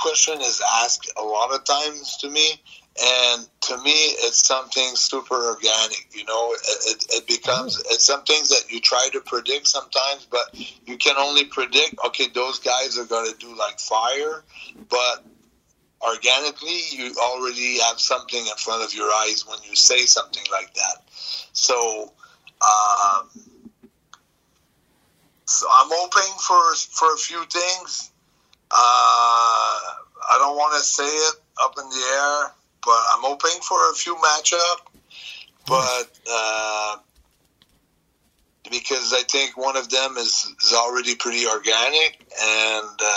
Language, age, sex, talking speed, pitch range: English, 30-49, male, 145 wpm, 115-160 Hz